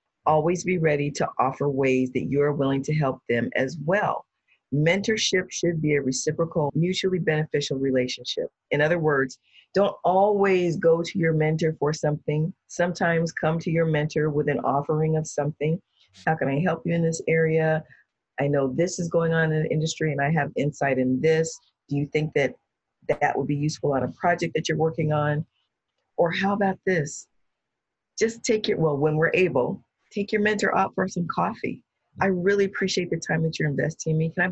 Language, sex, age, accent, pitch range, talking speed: English, female, 40-59, American, 150-190 Hz, 195 wpm